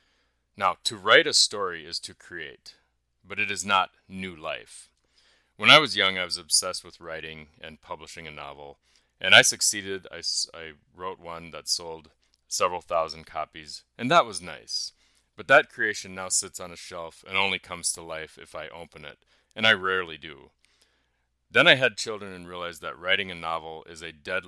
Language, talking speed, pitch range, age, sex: English, 190 wpm, 75-90 Hz, 30-49, male